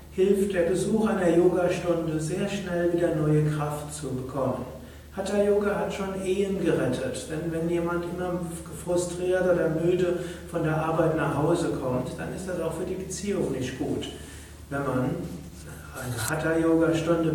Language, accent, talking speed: German, German, 150 wpm